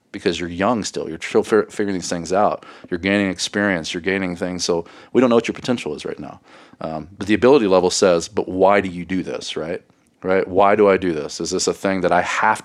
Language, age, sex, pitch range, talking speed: English, 40-59, male, 90-105 Hz, 245 wpm